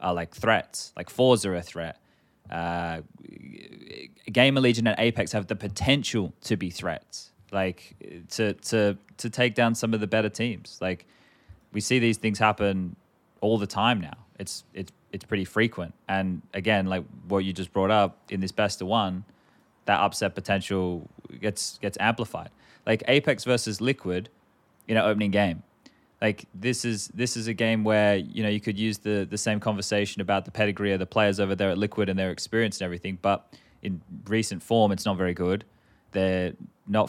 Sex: male